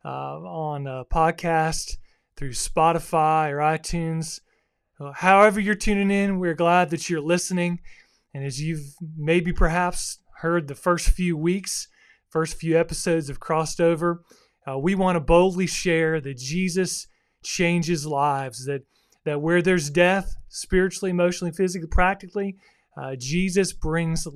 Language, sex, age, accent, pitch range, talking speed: English, male, 30-49, American, 155-185 Hz, 140 wpm